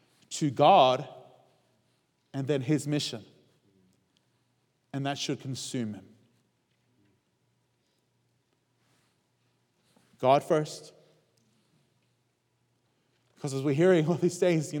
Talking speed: 85 wpm